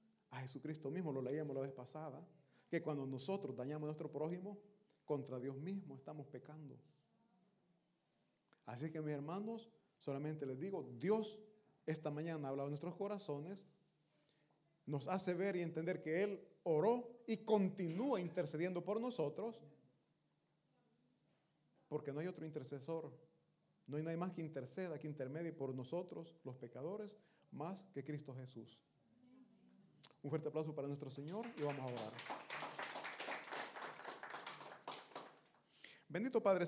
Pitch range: 145-190 Hz